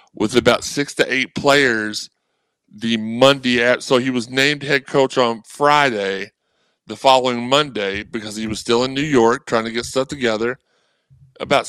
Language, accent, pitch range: English, American, 120-145 Hz